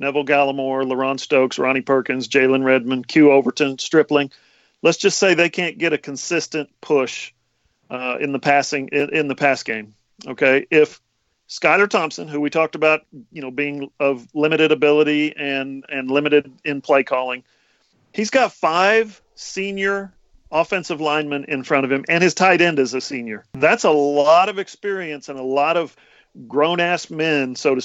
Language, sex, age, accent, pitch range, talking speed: English, male, 40-59, American, 135-165 Hz, 170 wpm